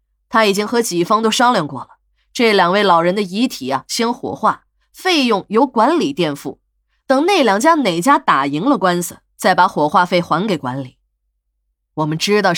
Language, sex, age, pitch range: Chinese, female, 20-39, 170-270 Hz